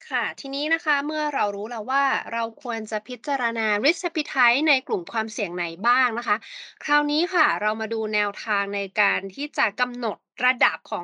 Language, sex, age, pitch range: Thai, female, 20-39, 215-290 Hz